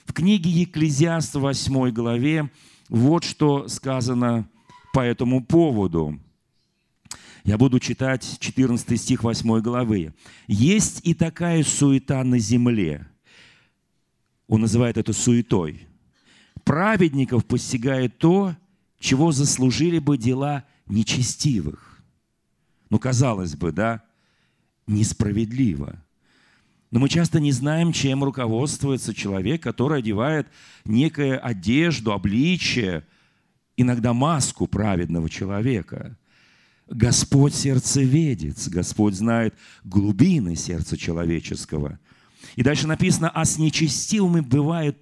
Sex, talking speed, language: male, 100 wpm, Russian